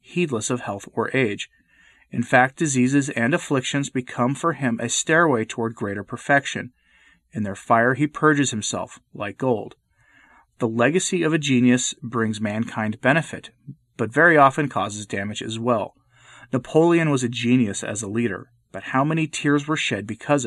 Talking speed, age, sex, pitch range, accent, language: 160 wpm, 30-49, male, 110-140 Hz, American, English